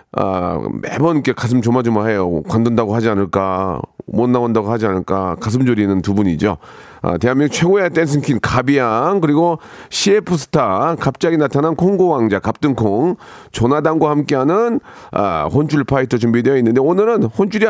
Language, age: Korean, 40-59